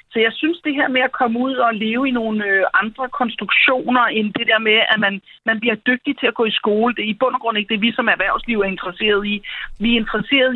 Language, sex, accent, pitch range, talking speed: Danish, female, native, 200-245 Hz, 265 wpm